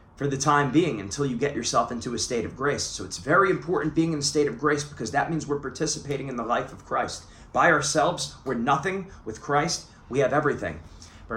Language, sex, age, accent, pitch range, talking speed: English, male, 30-49, American, 130-160 Hz, 225 wpm